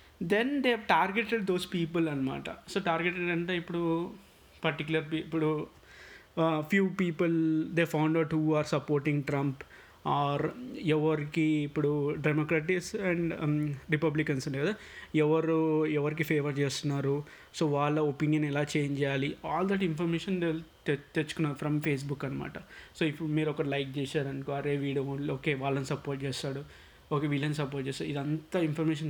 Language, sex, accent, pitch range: Telugu, male, native, 145-170 Hz